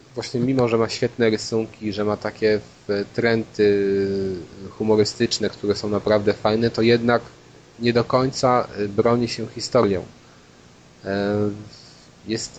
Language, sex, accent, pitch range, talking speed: Polish, male, native, 100-120 Hz, 115 wpm